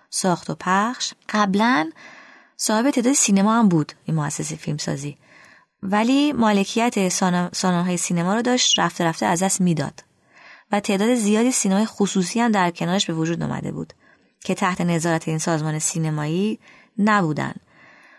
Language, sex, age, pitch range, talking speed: Persian, female, 20-39, 165-225 Hz, 145 wpm